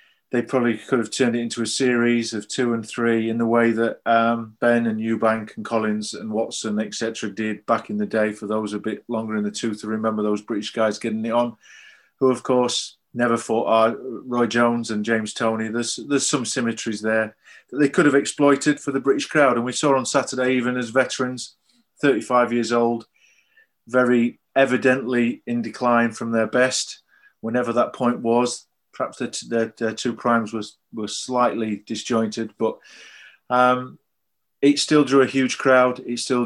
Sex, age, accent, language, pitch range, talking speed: male, 30-49, British, English, 115-125 Hz, 190 wpm